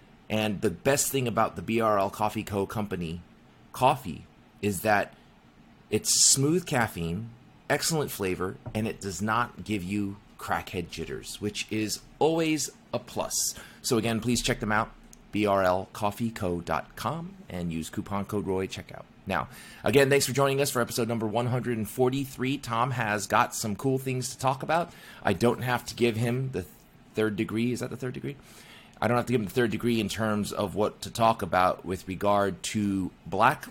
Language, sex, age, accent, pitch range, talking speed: English, male, 30-49, American, 105-125 Hz, 175 wpm